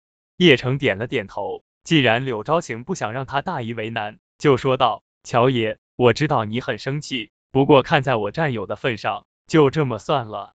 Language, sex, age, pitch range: Chinese, male, 20-39, 115-155 Hz